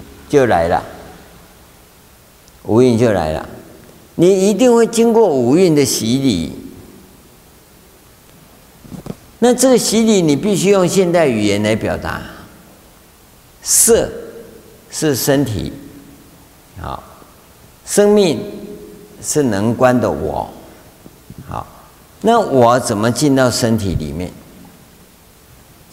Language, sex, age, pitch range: Chinese, male, 50-69, 100-130 Hz